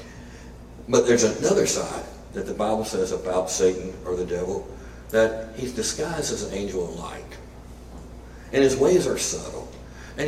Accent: American